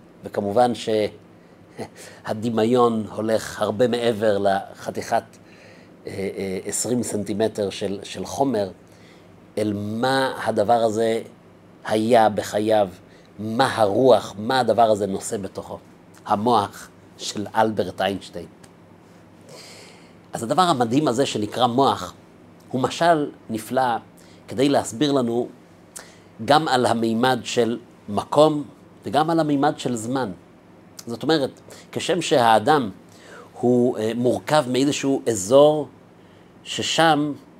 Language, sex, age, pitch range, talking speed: Hebrew, male, 50-69, 105-140 Hz, 95 wpm